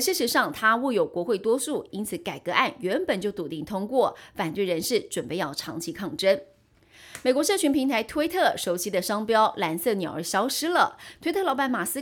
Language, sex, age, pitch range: Chinese, female, 30-49, 175-270 Hz